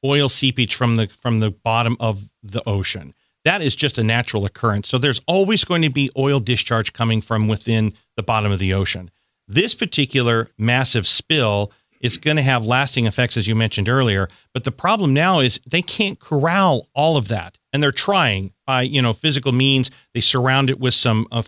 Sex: male